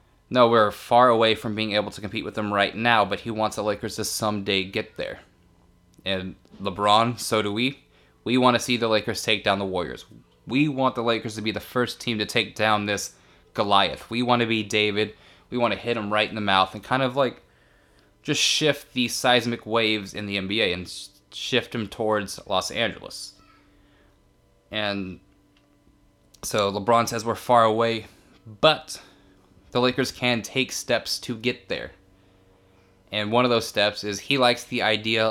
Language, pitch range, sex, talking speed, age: English, 95-120 Hz, male, 185 wpm, 20-39